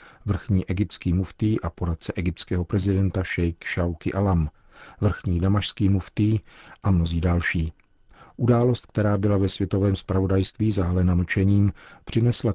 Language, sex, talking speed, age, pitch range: Czech, male, 120 wpm, 40-59, 90-100 Hz